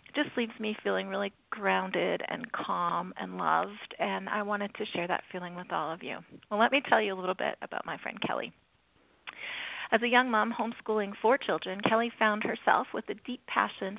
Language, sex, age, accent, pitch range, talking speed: English, female, 40-59, American, 195-230 Hz, 205 wpm